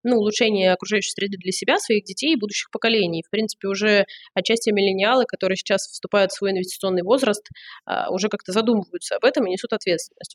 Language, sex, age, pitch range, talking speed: Russian, female, 20-39, 195-245 Hz, 180 wpm